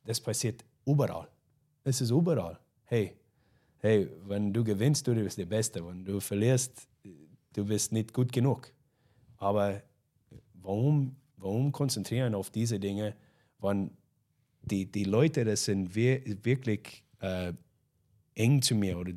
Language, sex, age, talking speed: German, male, 30-49, 130 wpm